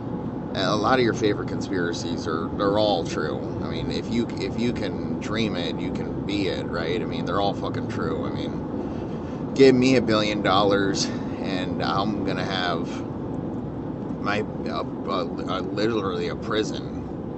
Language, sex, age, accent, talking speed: English, male, 30-49, American, 160 wpm